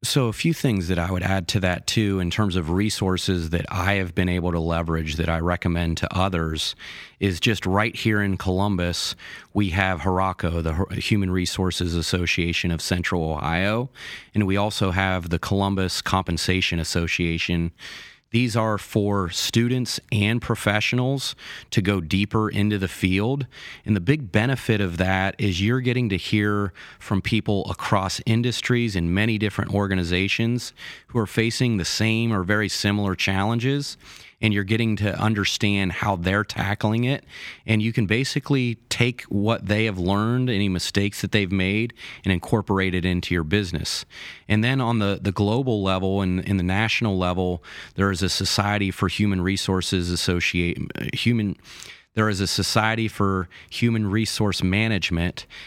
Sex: male